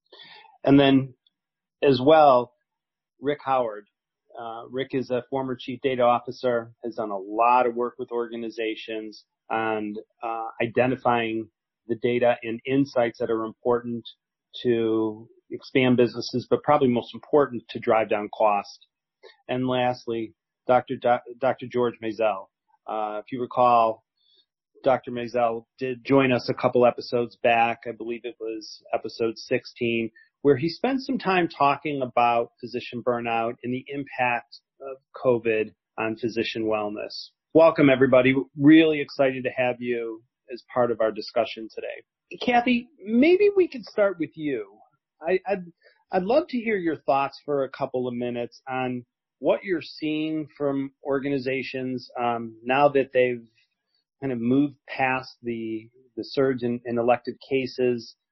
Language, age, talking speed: English, 40-59, 145 wpm